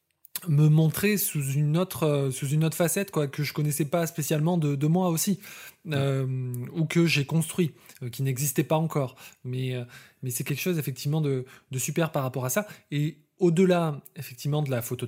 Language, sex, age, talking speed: French, male, 20-39, 200 wpm